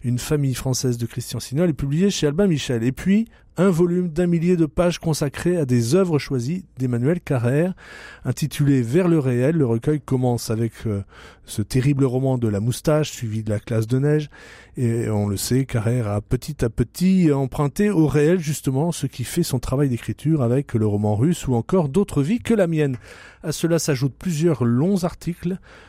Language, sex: French, male